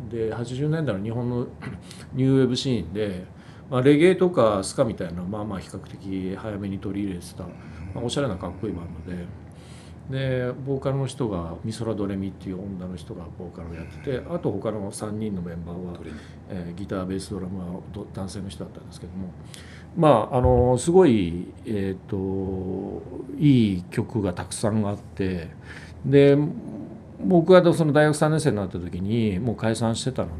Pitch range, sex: 95-130 Hz, male